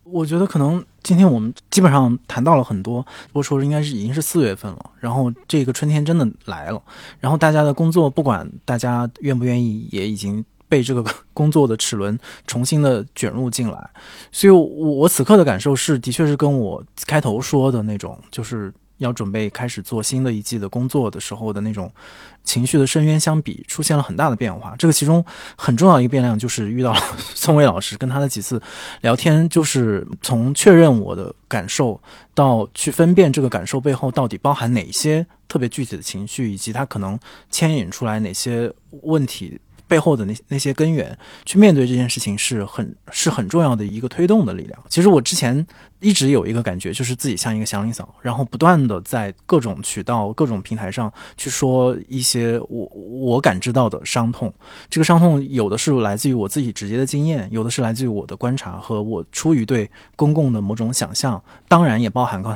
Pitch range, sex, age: 110-150 Hz, male, 20-39